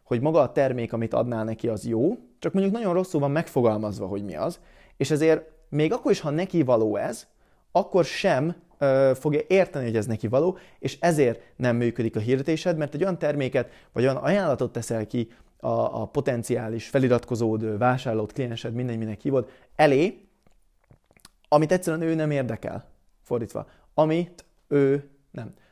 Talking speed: 155 wpm